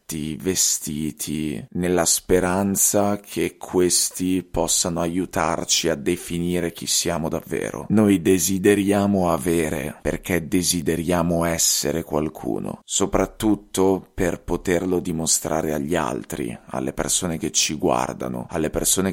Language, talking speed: Italian, 100 wpm